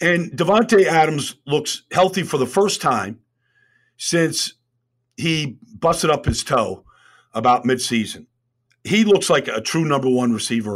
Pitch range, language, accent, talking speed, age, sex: 125-185 Hz, English, American, 140 wpm, 50-69, male